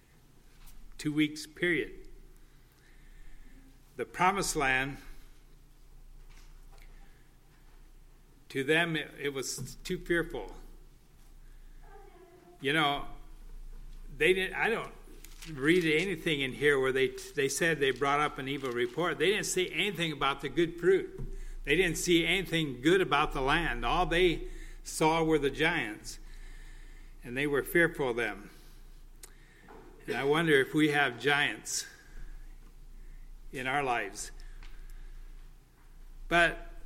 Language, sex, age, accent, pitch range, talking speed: English, male, 60-79, American, 140-175 Hz, 115 wpm